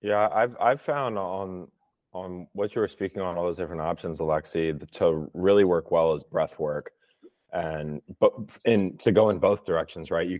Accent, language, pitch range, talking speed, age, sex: American, English, 75-85 Hz, 190 wpm, 20-39, male